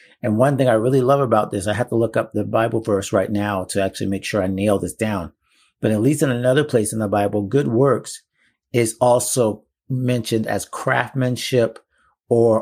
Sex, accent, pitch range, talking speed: male, American, 105-125 Hz, 205 wpm